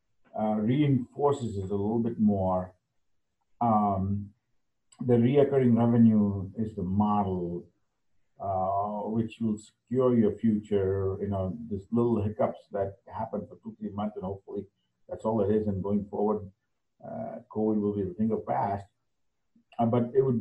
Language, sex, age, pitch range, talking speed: English, male, 50-69, 95-115 Hz, 155 wpm